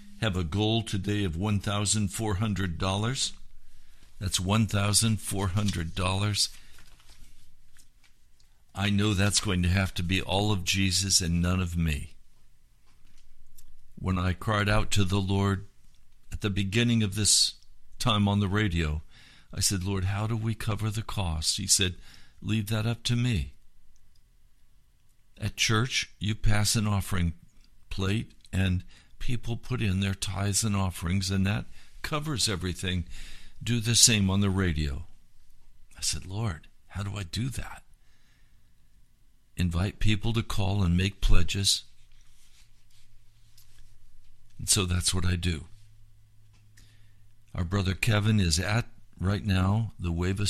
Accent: American